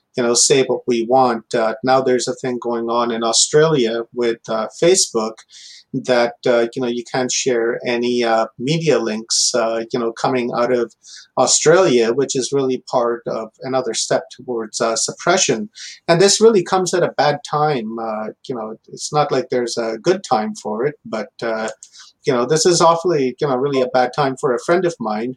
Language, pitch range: English, 115-135 Hz